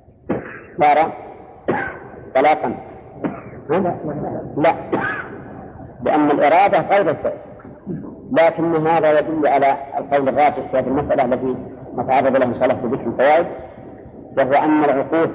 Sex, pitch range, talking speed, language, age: female, 135-160 Hz, 100 wpm, Arabic, 50-69